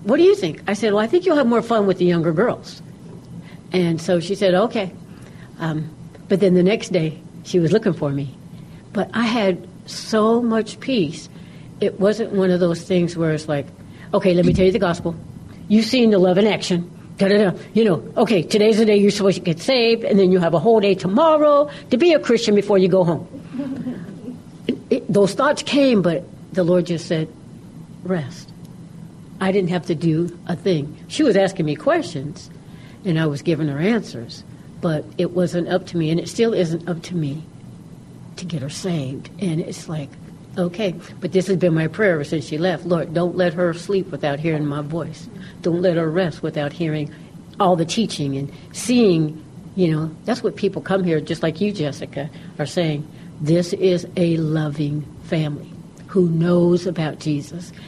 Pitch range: 165-195 Hz